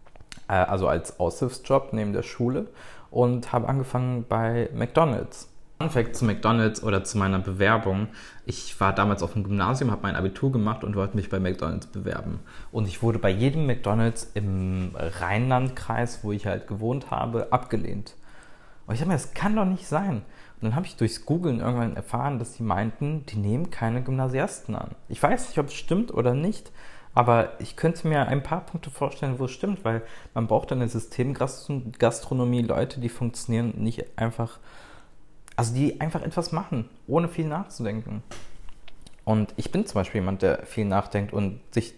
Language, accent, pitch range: German, German, 105-130 Hz